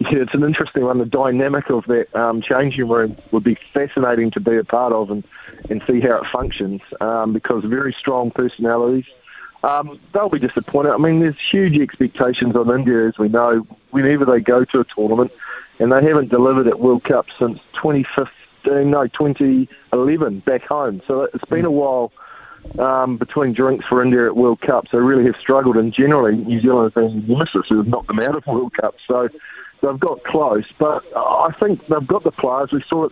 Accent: Australian